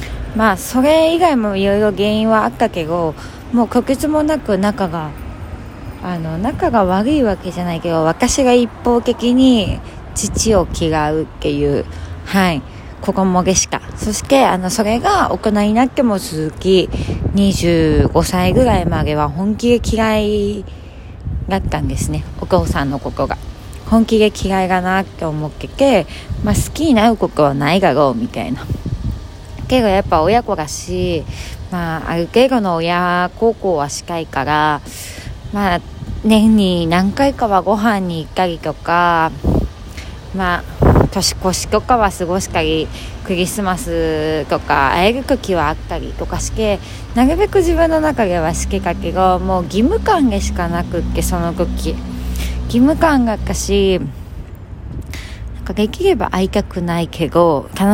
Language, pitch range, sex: Japanese, 150-220 Hz, female